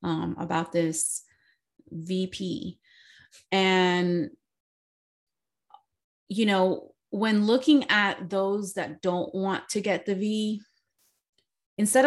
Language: English